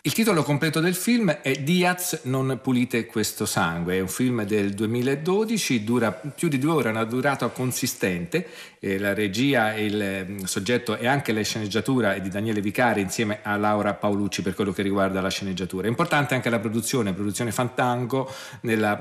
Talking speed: 175 wpm